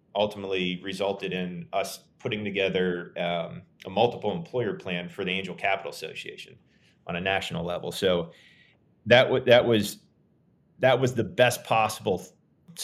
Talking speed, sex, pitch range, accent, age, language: 145 wpm, male, 90-110 Hz, American, 30-49, English